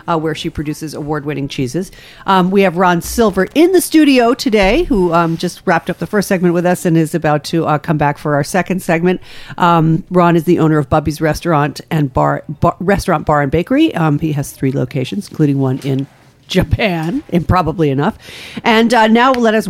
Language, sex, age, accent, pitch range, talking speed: English, female, 50-69, American, 150-195 Hz, 205 wpm